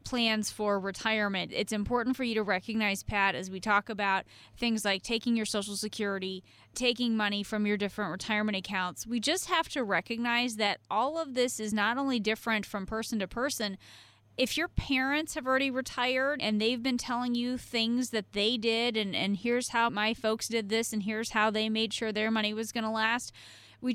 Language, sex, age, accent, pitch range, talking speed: English, female, 20-39, American, 205-245 Hz, 200 wpm